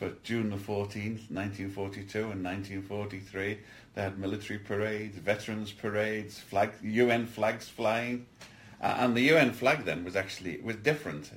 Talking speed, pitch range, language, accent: 145 wpm, 95-110 Hz, English, British